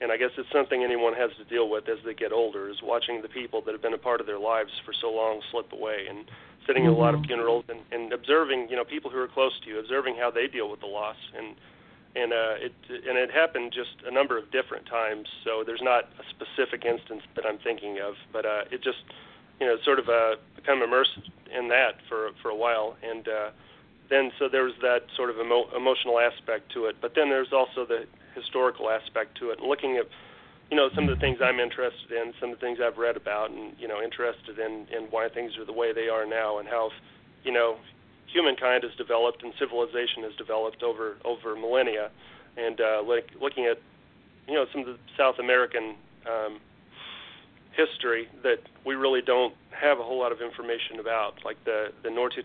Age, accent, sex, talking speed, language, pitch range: 40-59, American, male, 220 wpm, English, 115-130 Hz